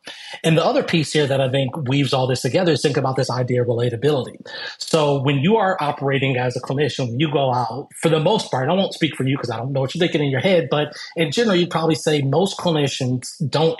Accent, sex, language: American, male, English